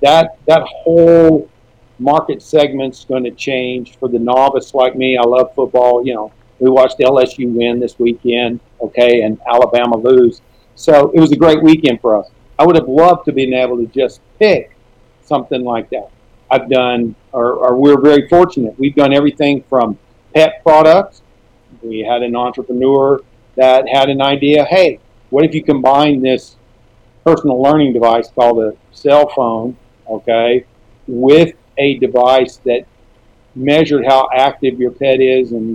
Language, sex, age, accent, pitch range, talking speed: English, male, 50-69, American, 120-145 Hz, 160 wpm